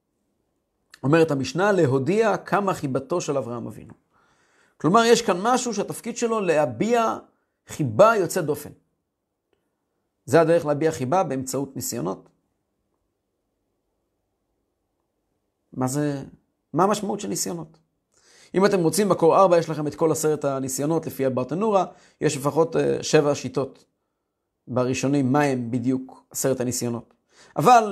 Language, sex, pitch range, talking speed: Hebrew, male, 145-210 Hz, 115 wpm